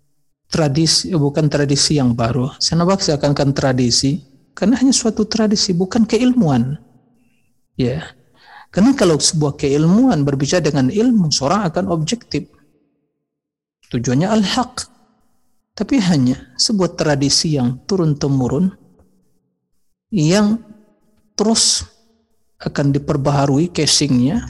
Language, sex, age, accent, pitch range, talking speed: Indonesian, male, 50-69, native, 135-185 Hz, 95 wpm